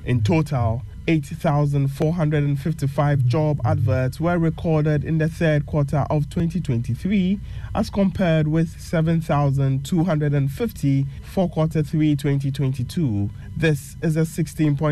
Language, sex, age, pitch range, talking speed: English, male, 20-39, 135-160 Hz, 85 wpm